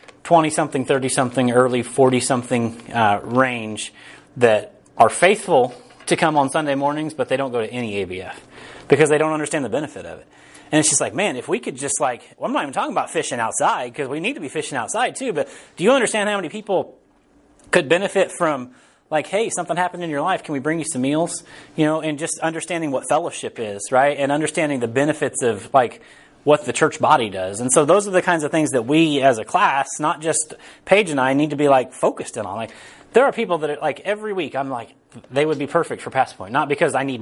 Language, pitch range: English, 130-170 Hz